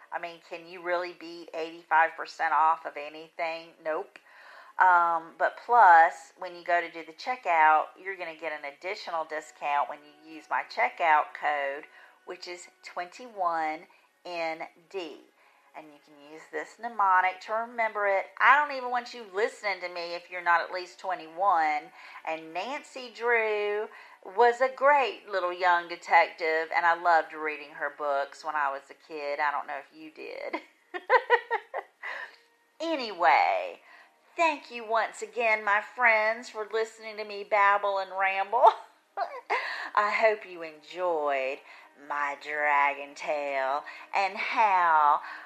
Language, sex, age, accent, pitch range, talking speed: English, female, 40-59, American, 155-220 Hz, 145 wpm